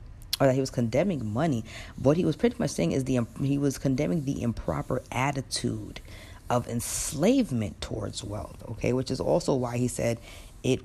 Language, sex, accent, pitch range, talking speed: English, female, American, 115-140 Hz, 175 wpm